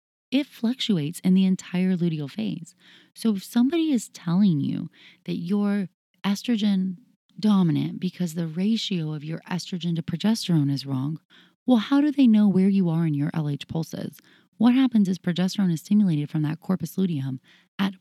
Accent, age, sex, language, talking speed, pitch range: American, 30-49, female, English, 165 wpm, 165-215 Hz